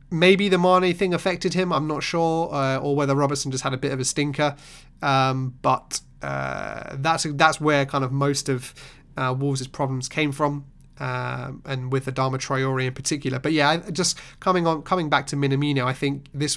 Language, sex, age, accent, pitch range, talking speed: English, male, 30-49, British, 135-150 Hz, 195 wpm